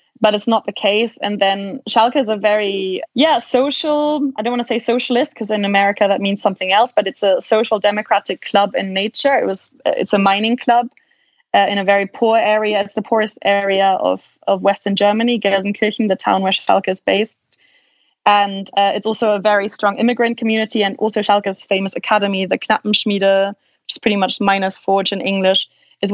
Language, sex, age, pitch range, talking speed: English, female, 20-39, 195-220 Hz, 195 wpm